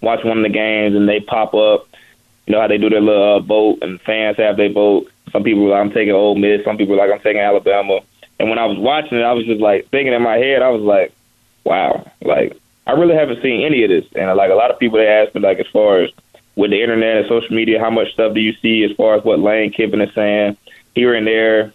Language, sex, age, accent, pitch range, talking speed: English, male, 20-39, American, 105-115 Hz, 270 wpm